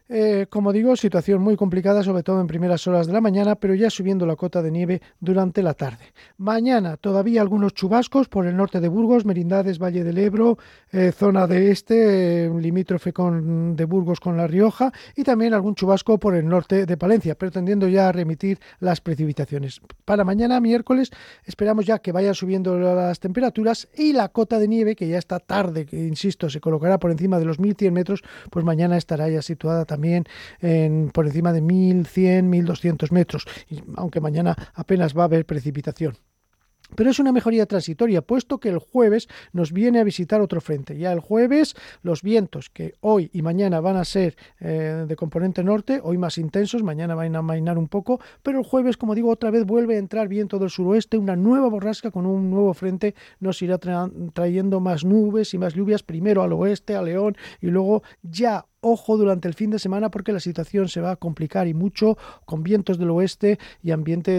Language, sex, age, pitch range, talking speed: Spanish, male, 40-59, 170-210 Hz, 200 wpm